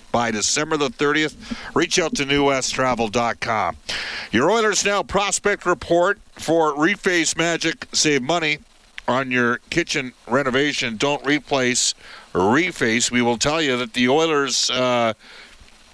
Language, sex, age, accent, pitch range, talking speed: English, male, 50-69, American, 120-150 Hz, 125 wpm